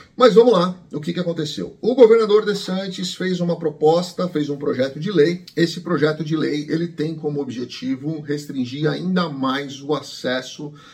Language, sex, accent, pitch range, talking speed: Portuguese, male, Brazilian, 140-175 Hz, 175 wpm